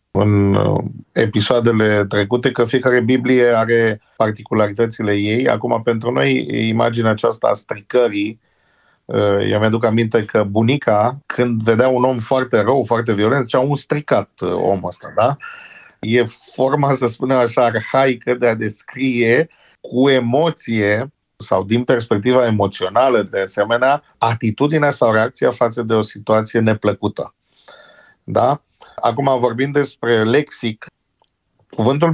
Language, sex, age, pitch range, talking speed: Romanian, male, 50-69, 110-125 Hz, 125 wpm